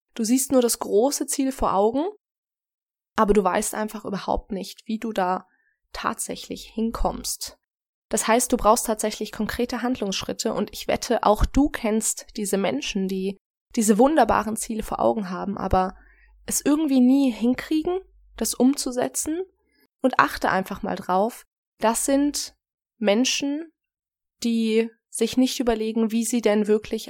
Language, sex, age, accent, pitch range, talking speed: German, female, 20-39, German, 205-255 Hz, 140 wpm